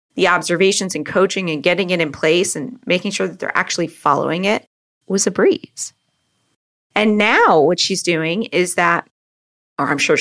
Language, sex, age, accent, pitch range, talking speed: English, female, 30-49, American, 160-200 Hz, 175 wpm